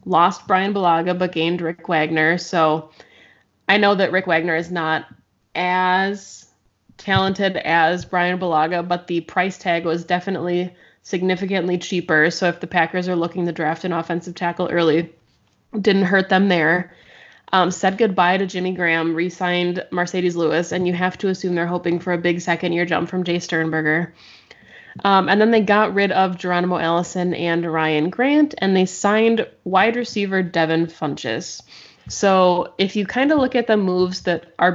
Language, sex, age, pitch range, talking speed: English, female, 20-39, 170-190 Hz, 170 wpm